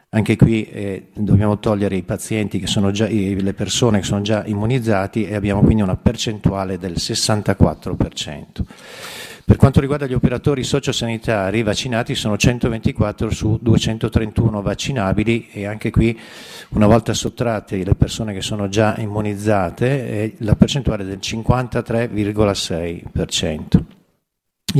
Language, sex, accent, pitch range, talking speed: Italian, male, native, 100-120 Hz, 130 wpm